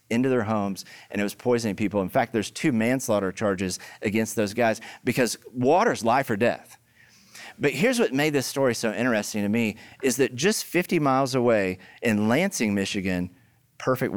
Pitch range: 105-135 Hz